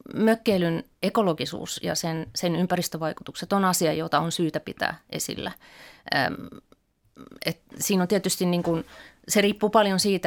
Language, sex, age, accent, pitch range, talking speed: Finnish, female, 30-49, native, 165-195 Hz, 130 wpm